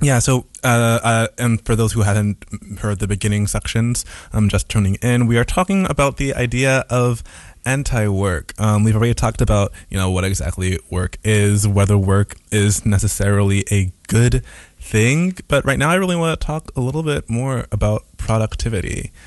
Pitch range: 100-125 Hz